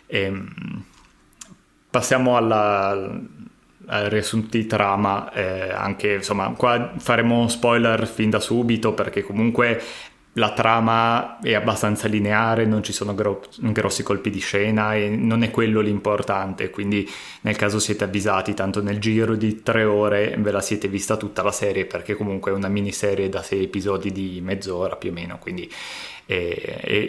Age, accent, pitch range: 20-39, native, 100-115 Hz